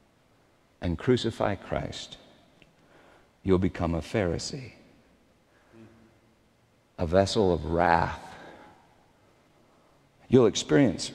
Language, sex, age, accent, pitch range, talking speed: English, male, 50-69, American, 150-240 Hz, 70 wpm